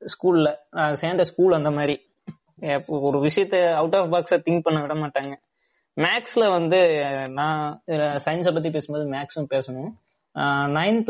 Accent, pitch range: native, 135-165 Hz